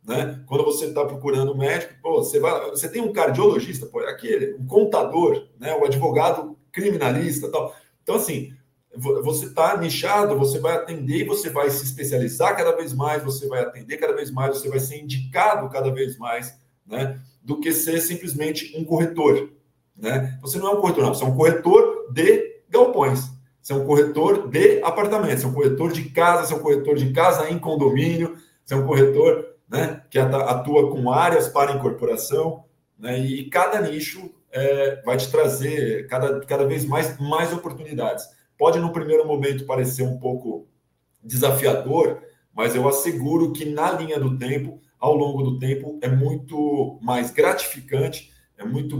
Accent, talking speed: Brazilian, 175 wpm